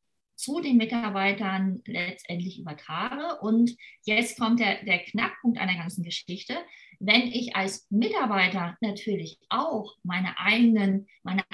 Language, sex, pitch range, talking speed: German, female, 195-245 Hz, 115 wpm